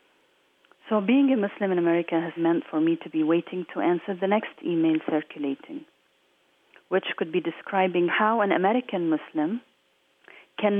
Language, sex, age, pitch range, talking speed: English, female, 40-59, 170-220 Hz, 155 wpm